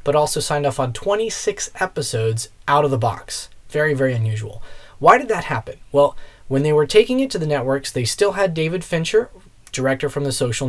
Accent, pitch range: American, 115-145 Hz